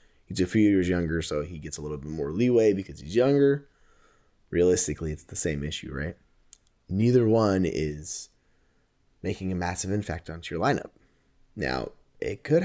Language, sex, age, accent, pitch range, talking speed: English, male, 20-39, American, 85-120 Hz, 165 wpm